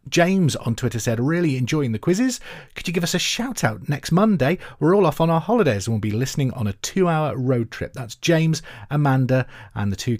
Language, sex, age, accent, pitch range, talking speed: English, male, 30-49, British, 110-155 Hz, 225 wpm